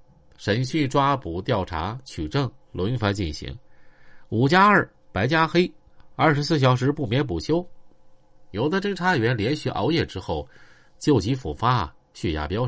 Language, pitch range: Chinese, 90-150 Hz